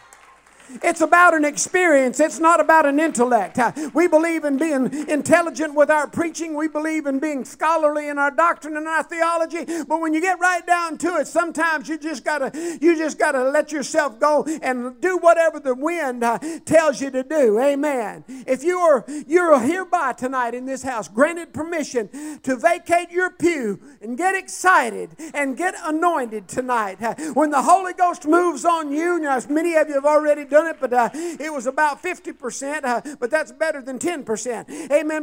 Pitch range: 285-350 Hz